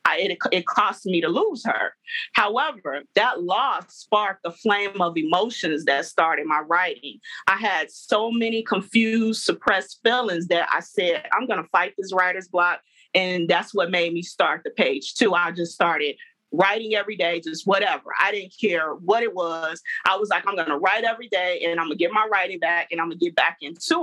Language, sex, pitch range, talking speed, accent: English, female, 175-230 Hz, 210 wpm, American